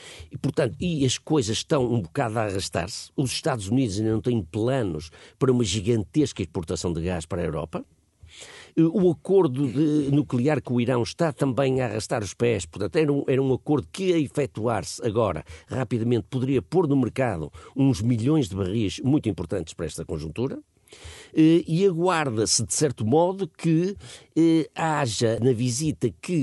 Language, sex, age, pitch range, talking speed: Portuguese, male, 50-69, 95-135 Hz, 170 wpm